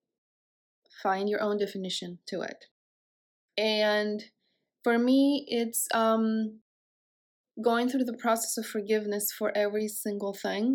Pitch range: 205-230 Hz